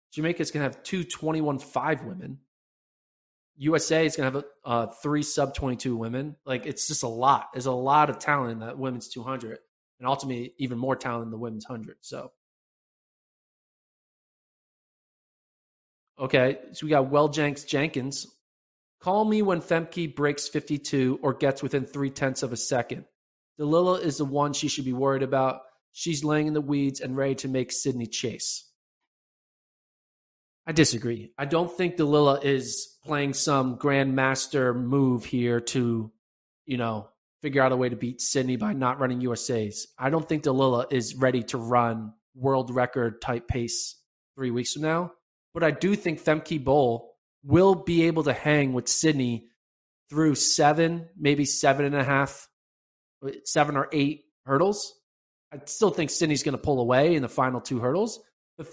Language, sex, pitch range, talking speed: English, male, 125-155 Hz, 170 wpm